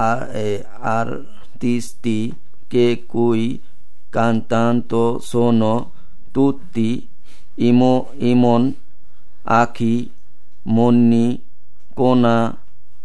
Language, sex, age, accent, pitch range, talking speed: Italian, male, 50-69, Indian, 110-130 Hz, 55 wpm